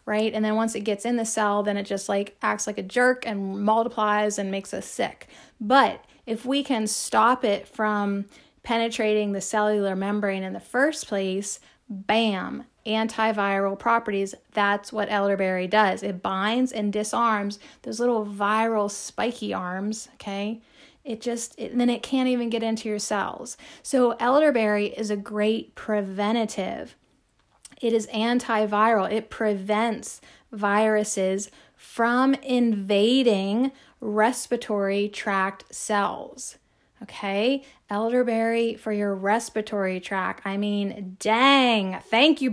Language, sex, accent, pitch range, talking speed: English, female, American, 205-235 Hz, 135 wpm